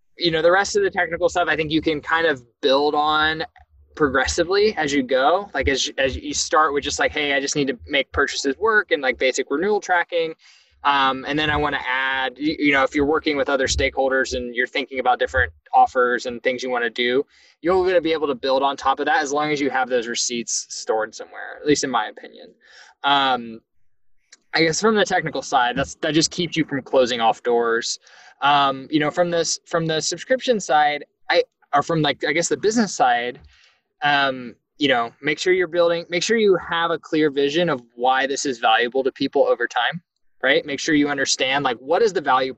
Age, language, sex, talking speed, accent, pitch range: 20-39, English, male, 225 wpm, American, 130-175 Hz